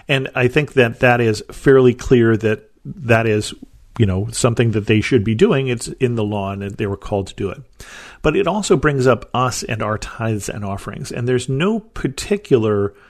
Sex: male